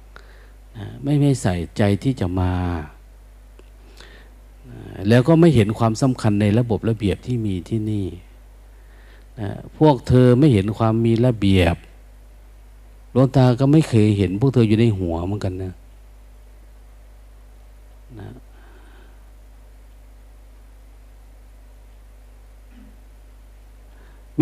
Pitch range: 90-125 Hz